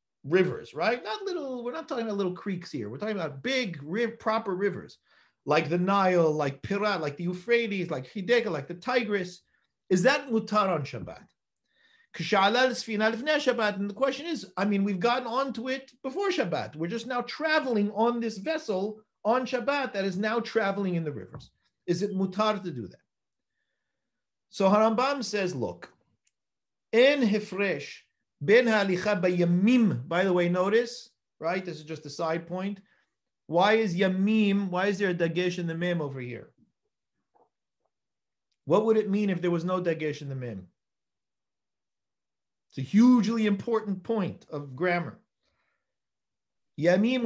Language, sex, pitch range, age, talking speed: English, male, 175-230 Hz, 50-69, 155 wpm